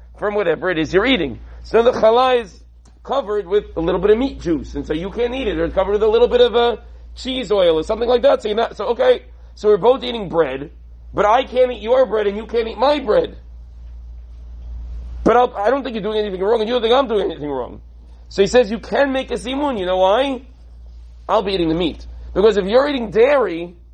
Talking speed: 250 wpm